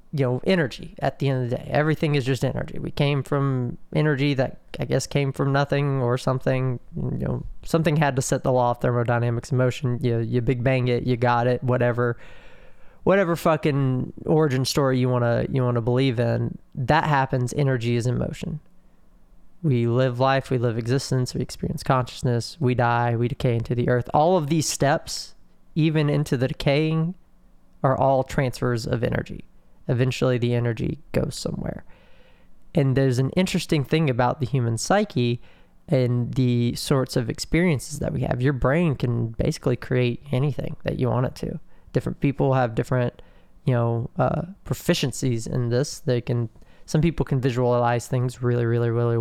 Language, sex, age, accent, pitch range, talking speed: English, male, 20-39, American, 120-145 Hz, 180 wpm